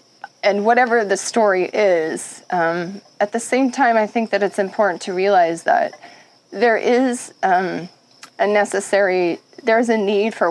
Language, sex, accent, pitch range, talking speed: English, female, American, 180-205 Hz, 160 wpm